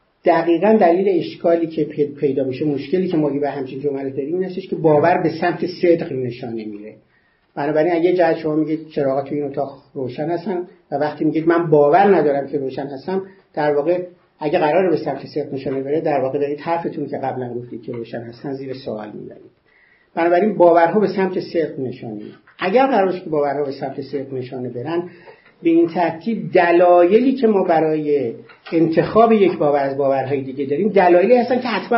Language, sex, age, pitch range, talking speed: Persian, male, 50-69, 140-180 Hz, 180 wpm